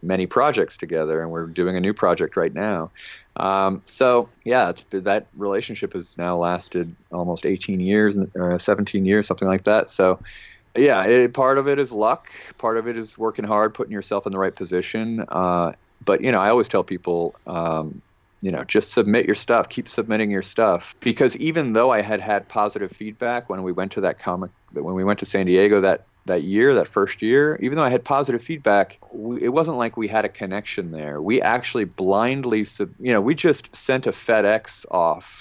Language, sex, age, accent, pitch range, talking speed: English, male, 40-59, American, 90-120 Hz, 210 wpm